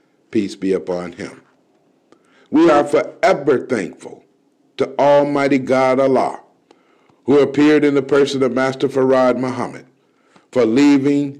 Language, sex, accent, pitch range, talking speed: English, male, American, 120-165 Hz, 120 wpm